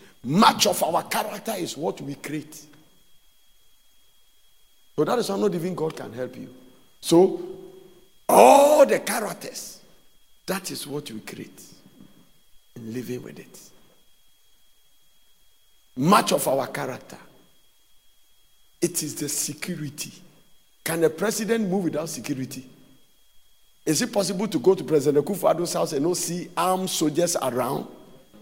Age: 50-69